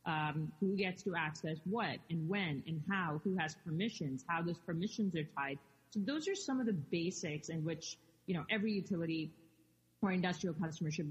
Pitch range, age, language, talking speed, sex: 155-185 Hz, 30-49, English, 190 wpm, female